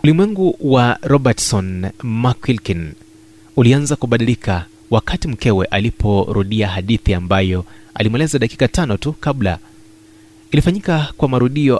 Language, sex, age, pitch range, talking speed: Swahili, male, 30-49, 105-130 Hz, 95 wpm